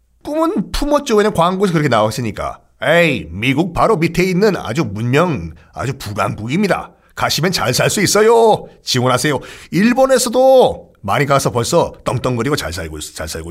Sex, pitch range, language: male, 115-175 Hz, Korean